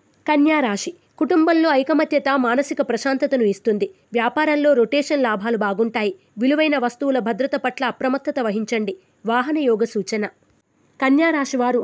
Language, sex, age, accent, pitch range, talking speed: Telugu, female, 20-39, native, 235-290 Hz, 100 wpm